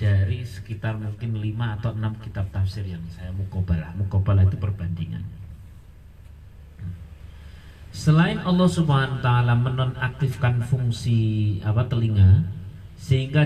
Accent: native